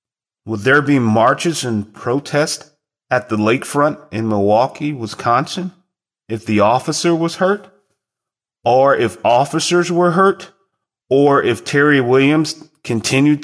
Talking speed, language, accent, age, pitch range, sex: 120 wpm, English, American, 30-49, 120-160 Hz, male